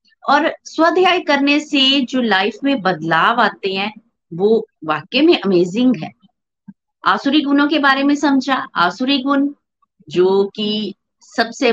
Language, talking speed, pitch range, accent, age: Hindi, 135 wpm, 195-265 Hz, native, 50-69